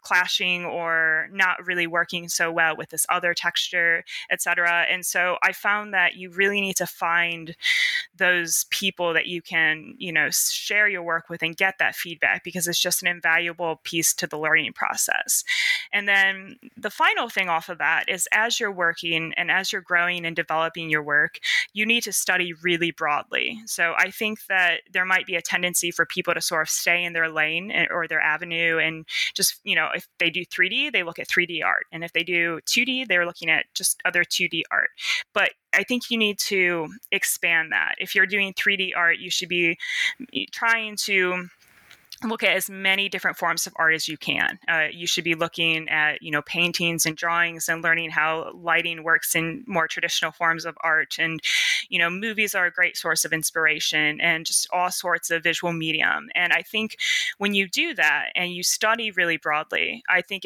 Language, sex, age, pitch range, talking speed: English, female, 20-39, 165-195 Hz, 200 wpm